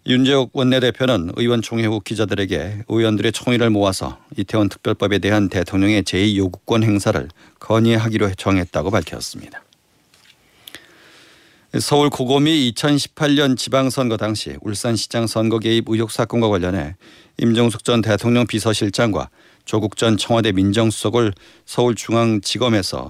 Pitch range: 100-125 Hz